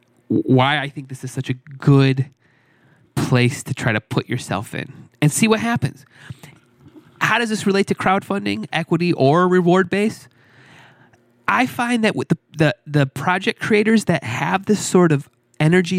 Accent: American